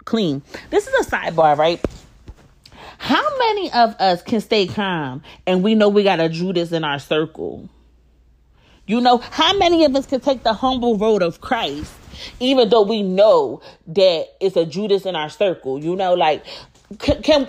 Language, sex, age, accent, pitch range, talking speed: English, female, 30-49, American, 190-275 Hz, 180 wpm